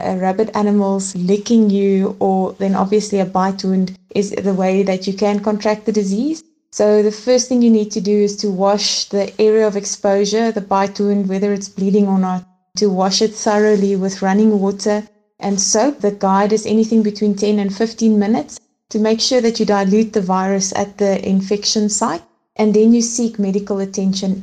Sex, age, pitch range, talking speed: female, 20-39, 195-215 Hz, 190 wpm